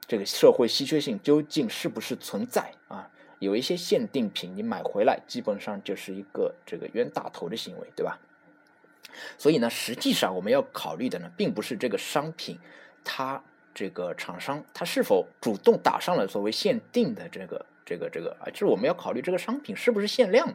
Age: 20-39